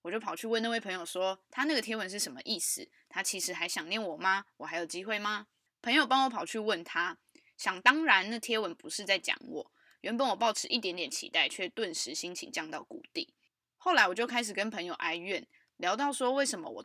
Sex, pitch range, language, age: female, 180-255 Hz, Chinese, 20-39